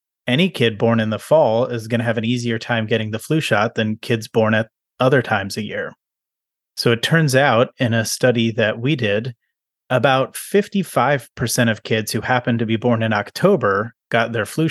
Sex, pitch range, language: male, 115-130 Hz, English